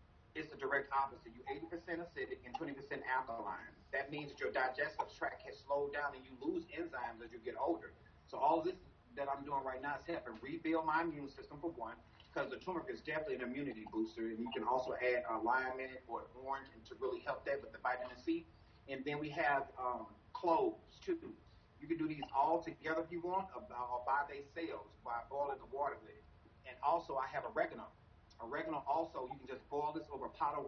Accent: American